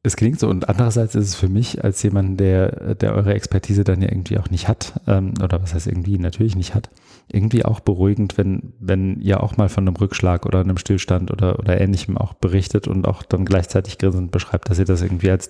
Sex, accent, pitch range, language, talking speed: male, German, 90-105 Hz, English, 225 wpm